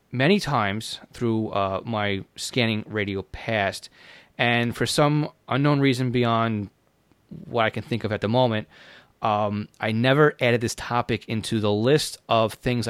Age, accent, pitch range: 30-49, American, 105-125 Hz